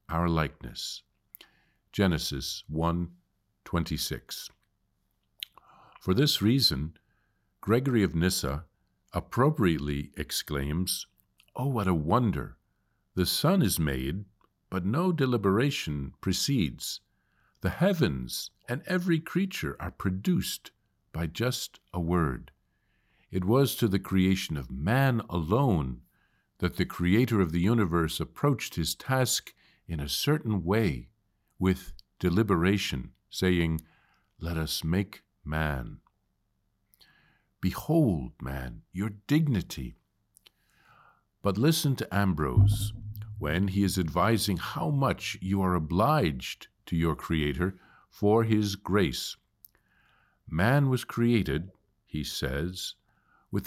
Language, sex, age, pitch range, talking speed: English, male, 50-69, 85-110 Hz, 105 wpm